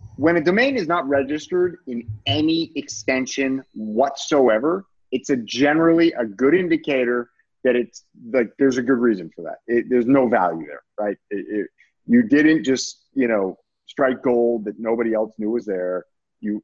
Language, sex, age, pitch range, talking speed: English, male, 30-49, 110-145 Hz, 160 wpm